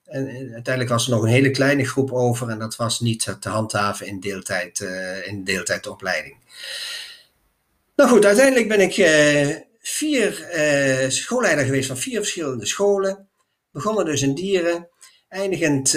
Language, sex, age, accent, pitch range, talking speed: Dutch, male, 50-69, Dutch, 115-155 Hz, 150 wpm